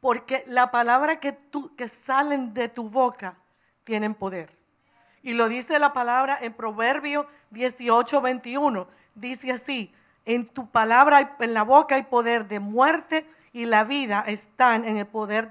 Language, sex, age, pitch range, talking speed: English, female, 50-69, 220-280 Hz, 155 wpm